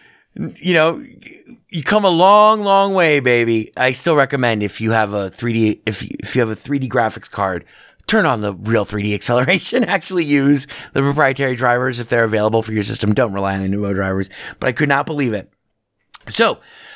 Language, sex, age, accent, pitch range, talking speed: English, male, 30-49, American, 110-165 Hz, 210 wpm